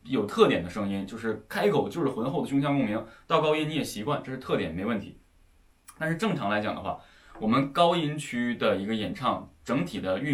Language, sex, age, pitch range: Chinese, male, 20-39, 105-150 Hz